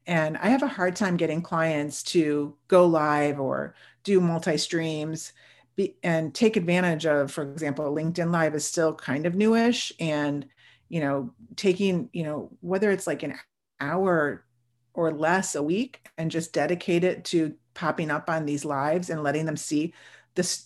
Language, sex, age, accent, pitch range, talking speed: English, female, 40-59, American, 150-180 Hz, 170 wpm